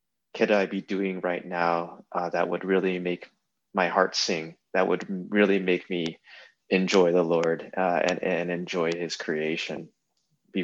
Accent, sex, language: American, male, English